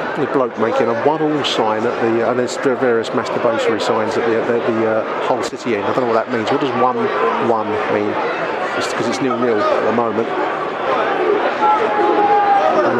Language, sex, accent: English, male, British